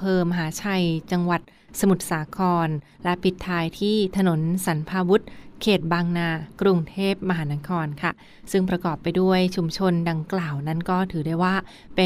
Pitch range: 170-195 Hz